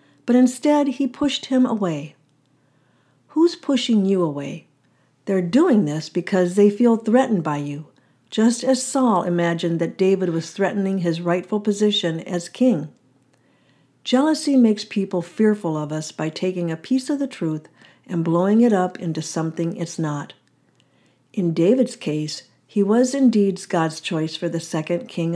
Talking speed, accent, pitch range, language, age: 155 wpm, American, 160-215 Hz, English, 60-79